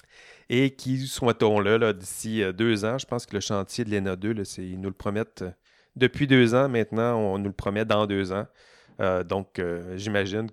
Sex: male